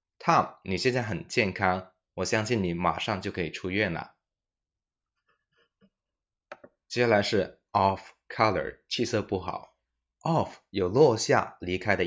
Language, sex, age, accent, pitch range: Chinese, male, 20-39, native, 90-110 Hz